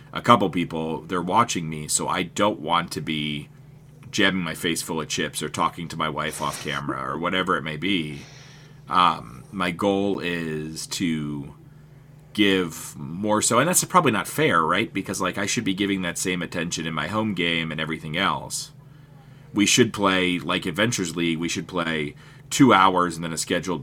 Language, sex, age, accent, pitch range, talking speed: English, male, 40-59, American, 80-100 Hz, 190 wpm